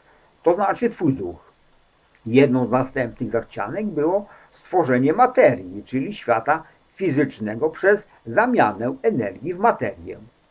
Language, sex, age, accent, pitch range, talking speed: English, male, 50-69, Polish, 120-200 Hz, 110 wpm